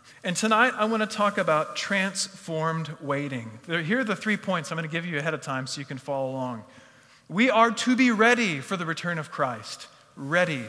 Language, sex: English, male